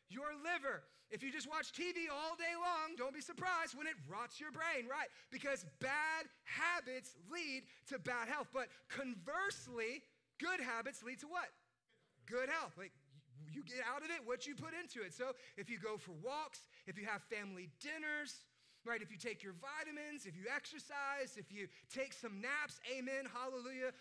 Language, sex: English, male